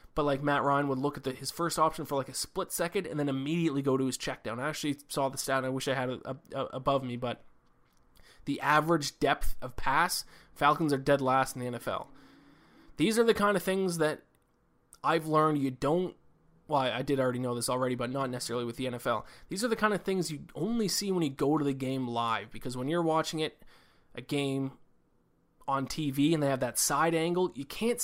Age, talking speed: 20-39, 230 wpm